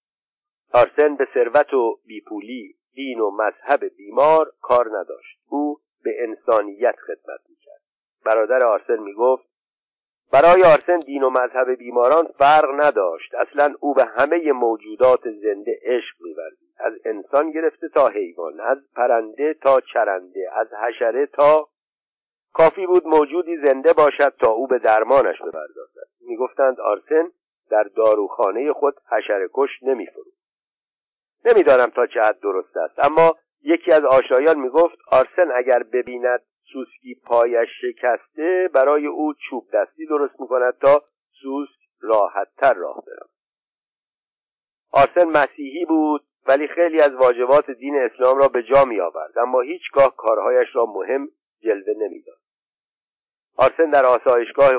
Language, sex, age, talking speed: Persian, male, 50-69, 130 wpm